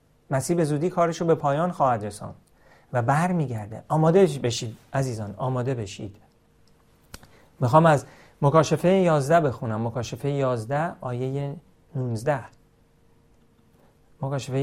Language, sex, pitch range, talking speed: Persian, male, 130-170 Hz, 105 wpm